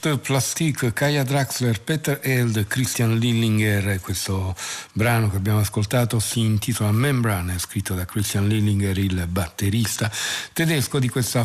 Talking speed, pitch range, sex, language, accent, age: 125 wpm, 100-125 Hz, male, Italian, native, 50-69